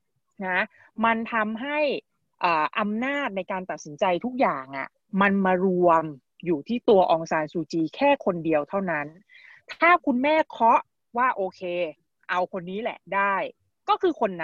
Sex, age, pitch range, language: female, 20-39, 170-225 Hz, Thai